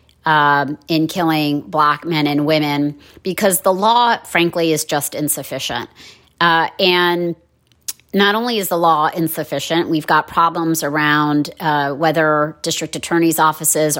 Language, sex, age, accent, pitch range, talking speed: English, female, 30-49, American, 150-170 Hz, 135 wpm